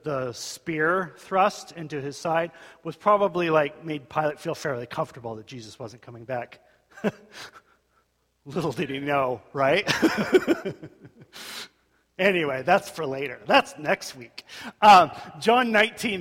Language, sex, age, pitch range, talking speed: English, male, 40-59, 140-190 Hz, 125 wpm